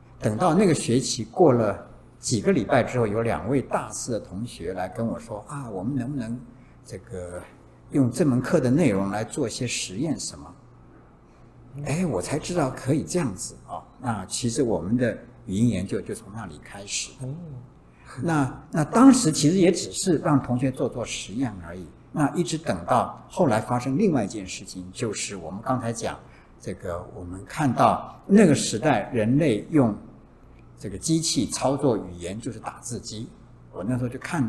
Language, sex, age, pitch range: Chinese, male, 60-79, 115-150 Hz